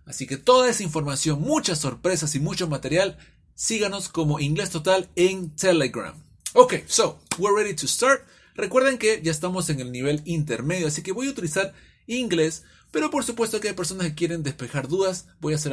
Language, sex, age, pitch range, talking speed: English, male, 30-49, 135-190 Hz, 185 wpm